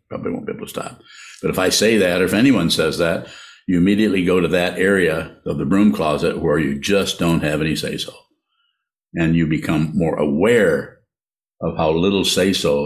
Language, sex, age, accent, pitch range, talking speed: English, male, 60-79, American, 85-105 Hz, 195 wpm